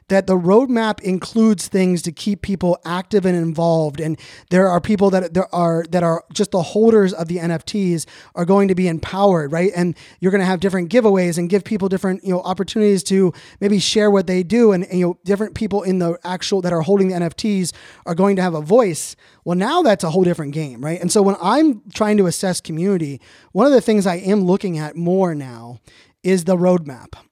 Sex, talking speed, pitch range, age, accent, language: male, 220 wpm, 170-200 Hz, 20-39, American, English